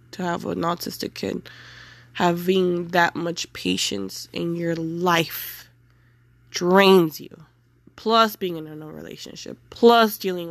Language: English